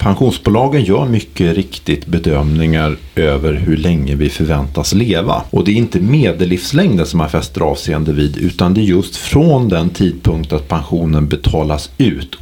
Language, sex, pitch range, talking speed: Swedish, male, 80-100 Hz, 155 wpm